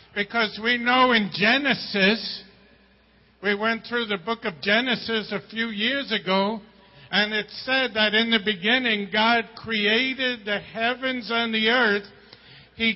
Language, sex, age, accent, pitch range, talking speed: English, male, 50-69, American, 195-230 Hz, 145 wpm